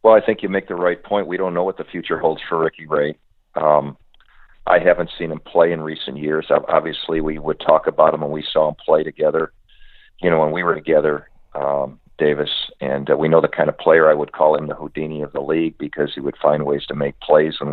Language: English